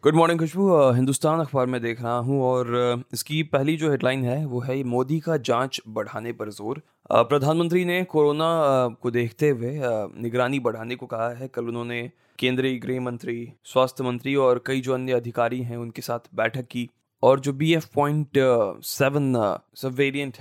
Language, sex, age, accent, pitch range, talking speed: Hindi, male, 20-39, native, 125-150 Hz, 175 wpm